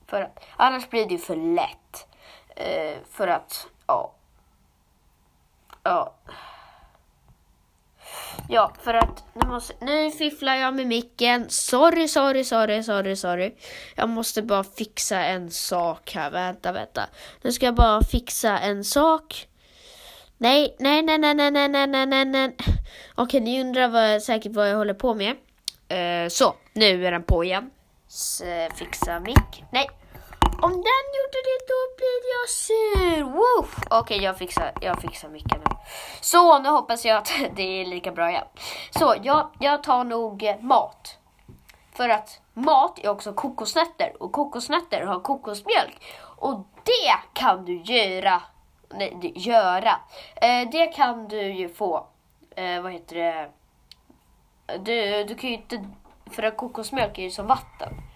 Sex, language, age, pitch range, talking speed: female, Swedish, 20-39, 190-285 Hz, 145 wpm